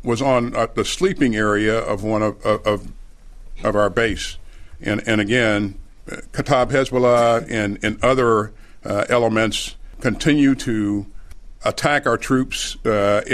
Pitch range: 115-150 Hz